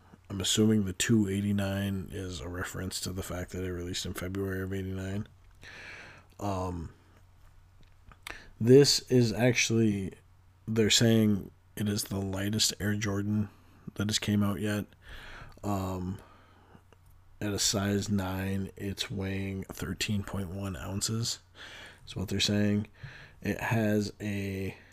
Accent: American